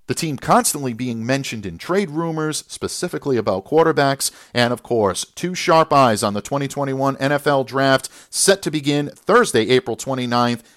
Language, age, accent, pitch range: English, 50-69, American, 115-150 Hz